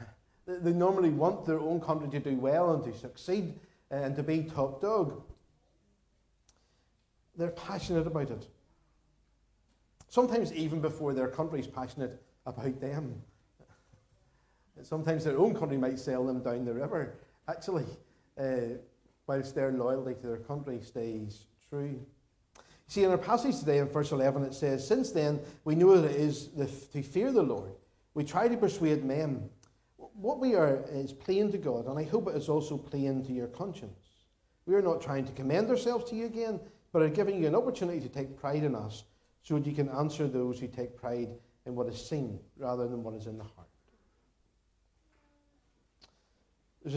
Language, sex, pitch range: English, male, 125-160 Hz